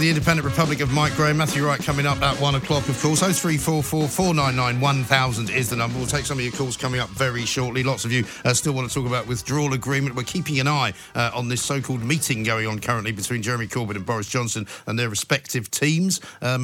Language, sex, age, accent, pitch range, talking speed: English, male, 50-69, British, 115-150 Hz, 235 wpm